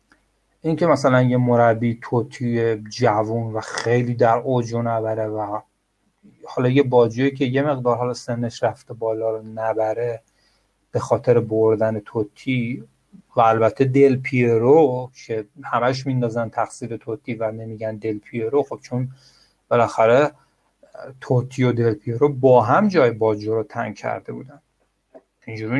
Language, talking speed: Persian, 130 wpm